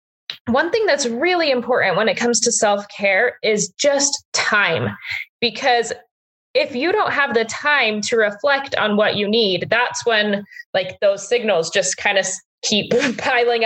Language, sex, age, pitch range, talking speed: English, female, 20-39, 205-260 Hz, 160 wpm